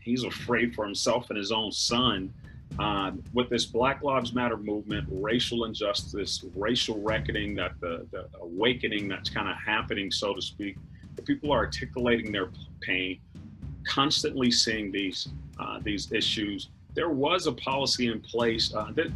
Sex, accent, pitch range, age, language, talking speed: male, American, 95-125 Hz, 40-59, English, 155 wpm